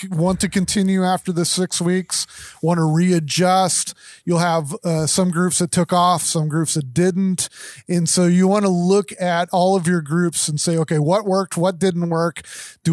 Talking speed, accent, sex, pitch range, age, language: 195 wpm, American, male, 155-180 Hz, 30-49, English